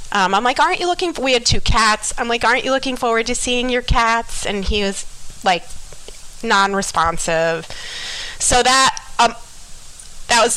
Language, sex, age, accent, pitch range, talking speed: English, female, 30-49, American, 185-250 Hz, 175 wpm